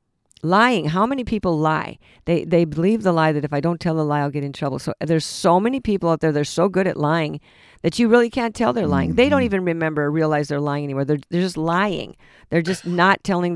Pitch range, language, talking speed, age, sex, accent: 155-185 Hz, English, 250 wpm, 50-69, female, American